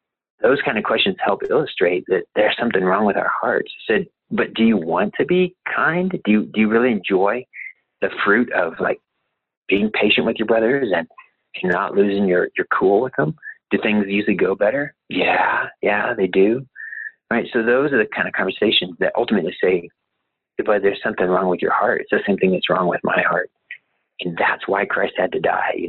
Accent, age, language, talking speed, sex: American, 30-49, English, 205 wpm, male